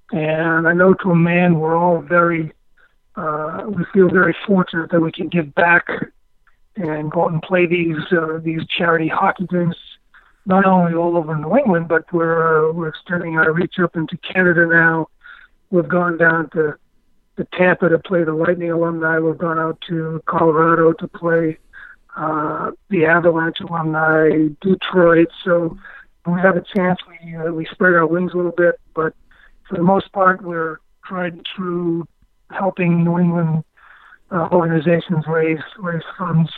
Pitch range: 160-180 Hz